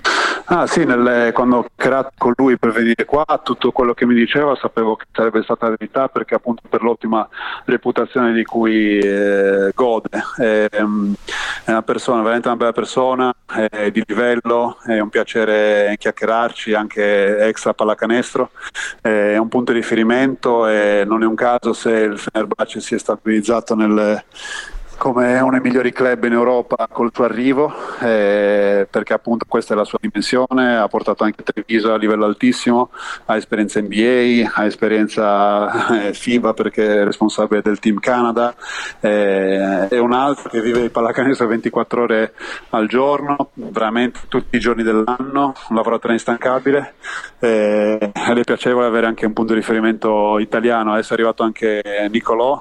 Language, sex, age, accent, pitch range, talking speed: Italian, male, 30-49, native, 110-120 Hz, 160 wpm